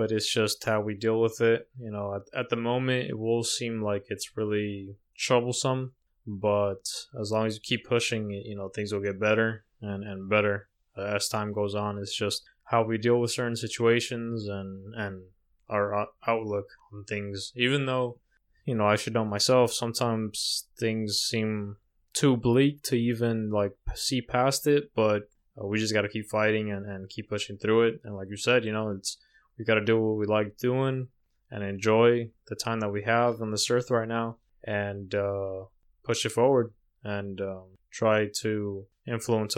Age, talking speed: 20-39, 195 wpm